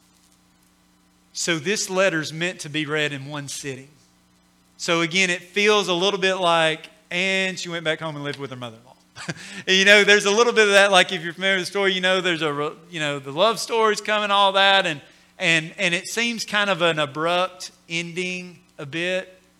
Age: 40-59